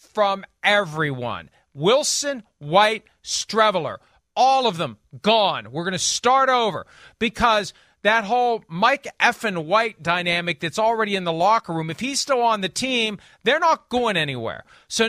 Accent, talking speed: American, 150 wpm